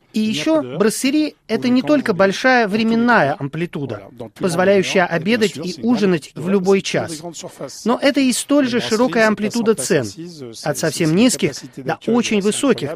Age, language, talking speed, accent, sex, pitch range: 30-49, Russian, 140 wpm, native, male, 150-215 Hz